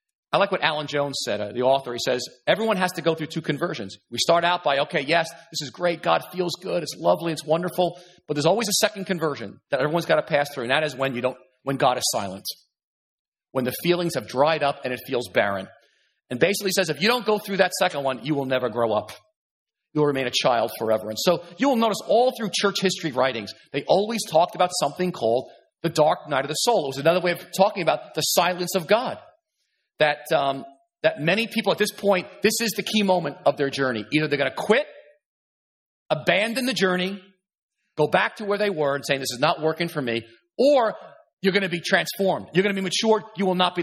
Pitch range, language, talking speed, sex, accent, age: 145-205 Hz, English, 240 wpm, male, American, 40-59